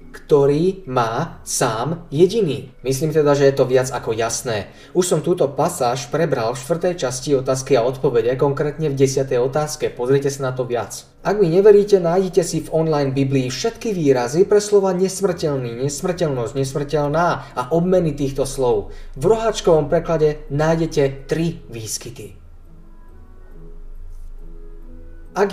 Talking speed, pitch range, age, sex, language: 135 wpm, 130-180 Hz, 20-39, male, Slovak